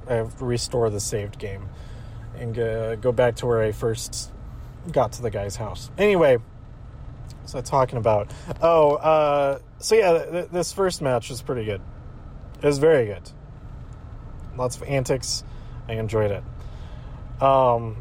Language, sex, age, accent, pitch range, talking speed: English, male, 30-49, American, 115-165 Hz, 145 wpm